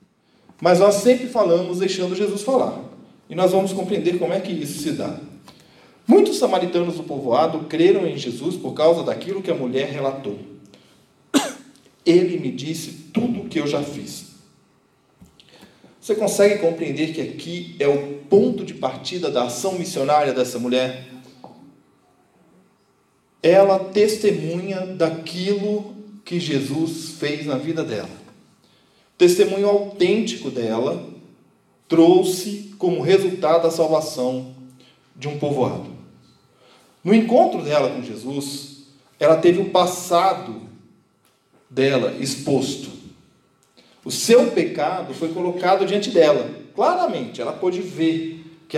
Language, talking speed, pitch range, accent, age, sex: Portuguese, 120 wpm, 140-190 Hz, Brazilian, 40-59, male